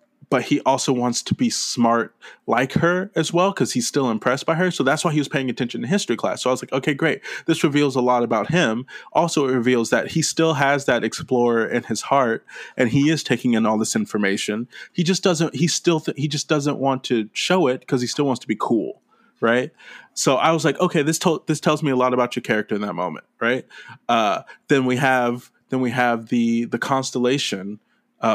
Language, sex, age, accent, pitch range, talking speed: English, male, 20-39, American, 115-145 Hz, 235 wpm